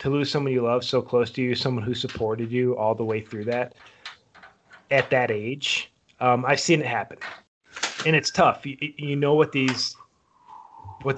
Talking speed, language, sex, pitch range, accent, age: 190 wpm, English, male, 120-145 Hz, American, 30-49